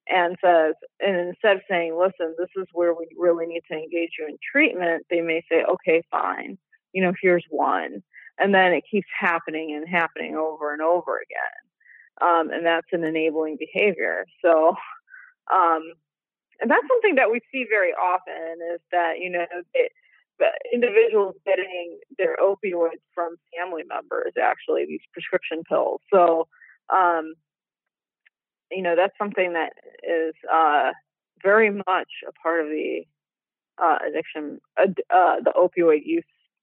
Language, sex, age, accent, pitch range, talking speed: English, female, 30-49, American, 165-210 Hz, 150 wpm